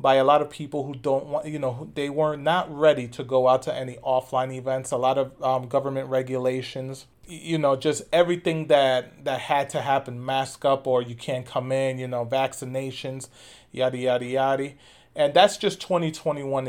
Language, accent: English, American